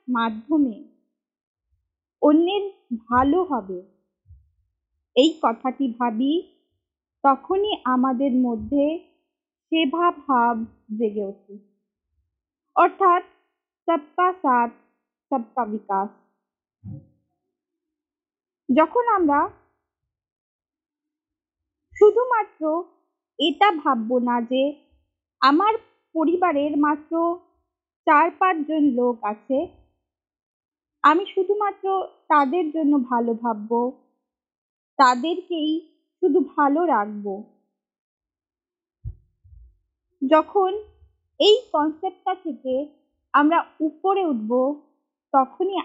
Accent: native